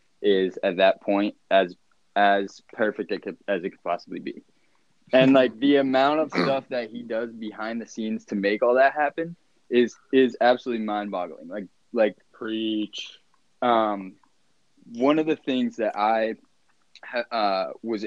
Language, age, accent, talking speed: English, 20-39, American, 155 wpm